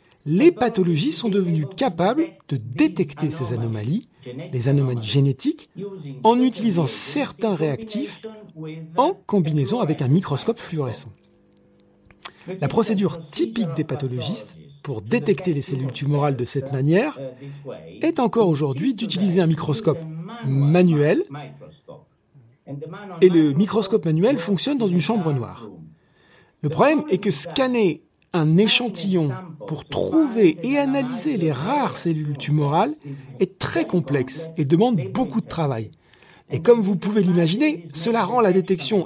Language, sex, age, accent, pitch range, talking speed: French, male, 40-59, French, 145-215 Hz, 130 wpm